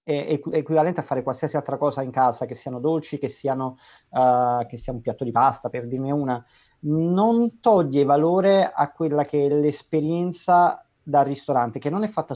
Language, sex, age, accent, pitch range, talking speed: Italian, male, 30-49, native, 130-160 Hz, 185 wpm